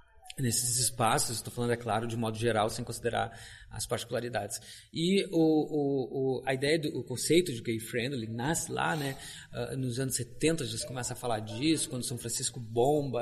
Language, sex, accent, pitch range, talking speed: Portuguese, male, Brazilian, 115-150 Hz, 195 wpm